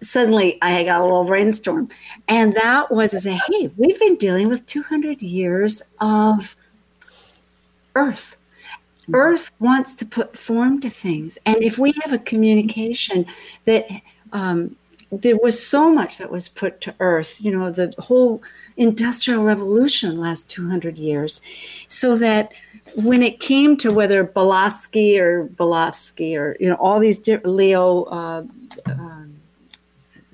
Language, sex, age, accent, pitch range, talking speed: English, female, 60-79, American, 180-240 Hz, 140 wpm